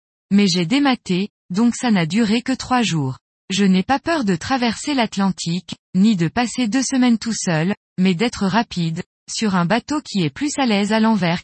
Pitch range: 180-250 Hz